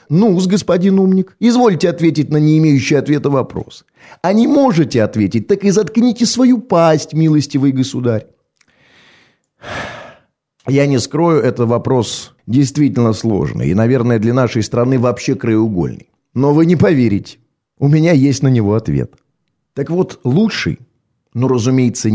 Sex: male